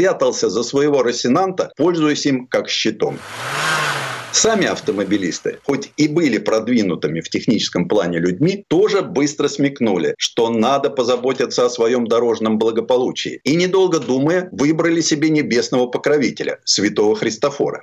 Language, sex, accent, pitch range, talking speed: Russian, male, native, 135-220 Hz, 125 wpm